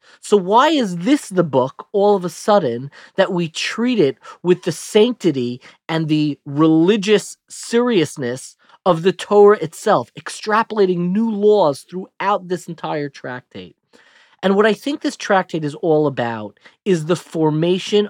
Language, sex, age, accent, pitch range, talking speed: English, male, 30-49, American, 145-195 Hz, 145 wpm